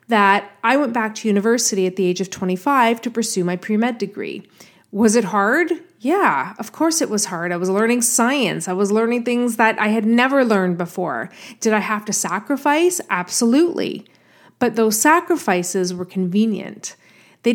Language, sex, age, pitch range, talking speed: English, female, 30-49, 195-240 Hz, 175 wpm